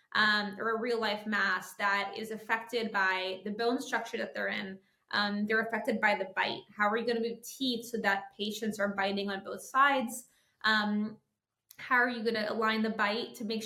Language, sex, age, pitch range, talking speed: English, female, 20-39, 210-235 Hz, 200 wpm